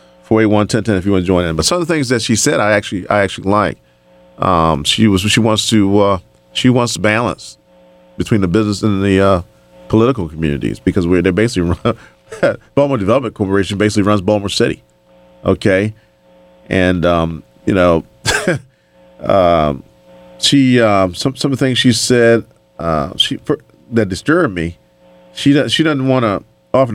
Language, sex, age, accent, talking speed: English, male, 40-59, American, 175 wpm